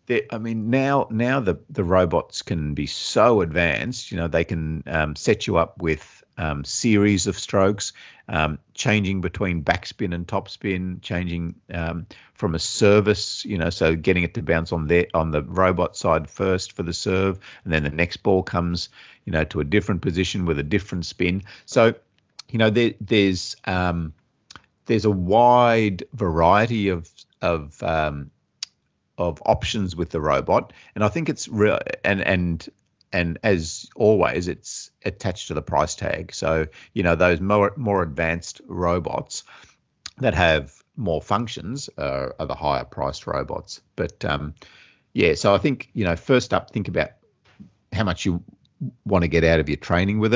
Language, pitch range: English, 80-105 Hz